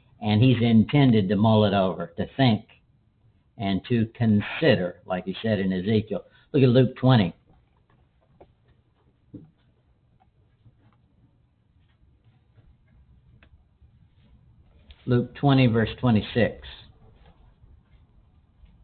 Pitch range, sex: 105-130 Hz, male